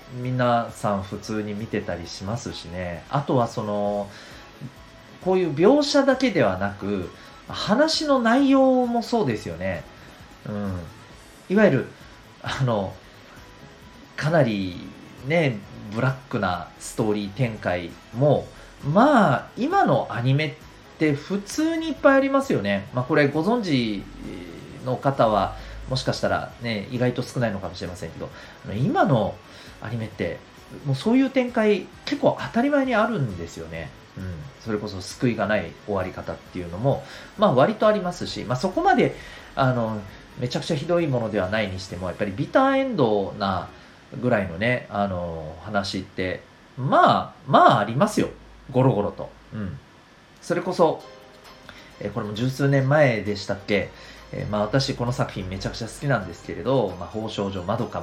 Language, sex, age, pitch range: Japanese, male, 40-59, 100-150 Hz